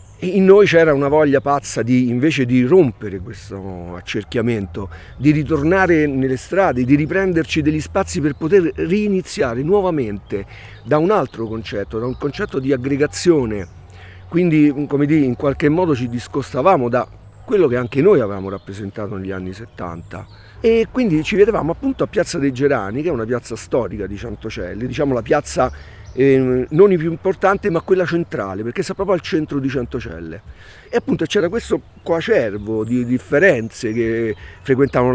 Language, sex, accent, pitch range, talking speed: Italian, male, native, 110-155 Hz, 160 wpm